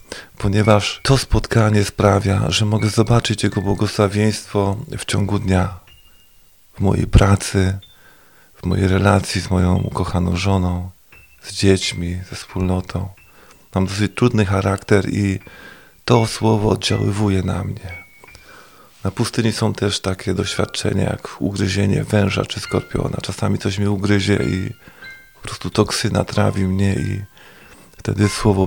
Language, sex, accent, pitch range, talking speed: Polish, male, native, 95-110 Hz, 125 wpm